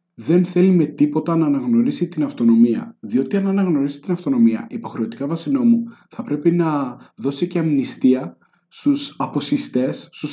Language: Greek